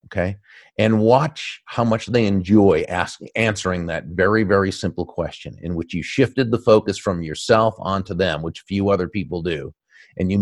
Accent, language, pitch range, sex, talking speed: American, English, 85-110 Hz, male, 180 wpm